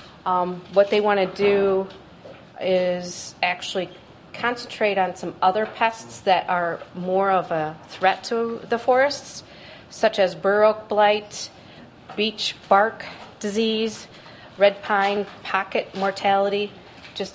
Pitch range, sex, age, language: 175-210 Hz, female, 40-59, English